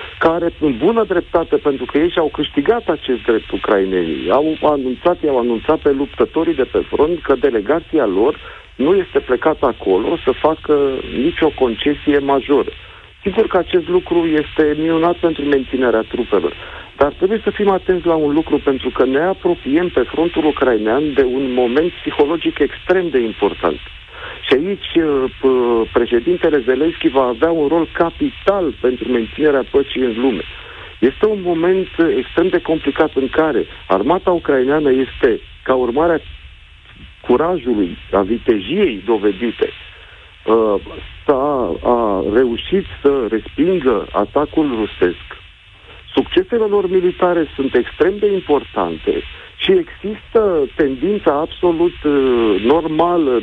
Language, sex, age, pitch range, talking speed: Romanian, male, 50-69, 130-195 Hz, 125 wpm